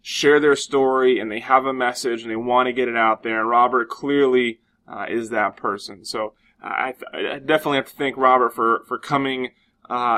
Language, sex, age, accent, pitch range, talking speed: English, male, 20-39, American, 125-145 Hz, 205 wpm